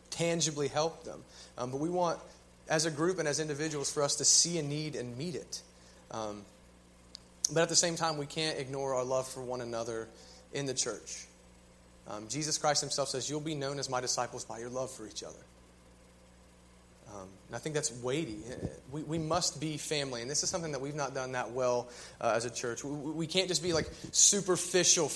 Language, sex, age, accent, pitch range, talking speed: English, male, 30-49, American, 115-165 Hz, 210 wpm